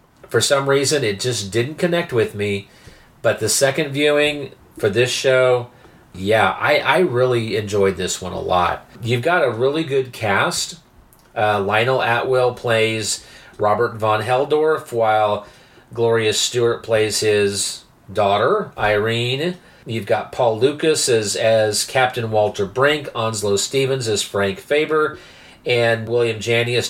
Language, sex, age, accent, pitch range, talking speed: English, male, 40-59, American, 110-140 Hz, 140 wpm